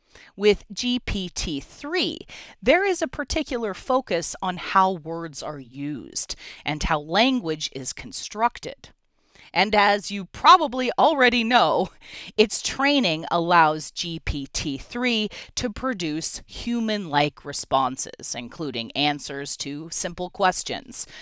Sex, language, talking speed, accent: female, English, 100 wpm, American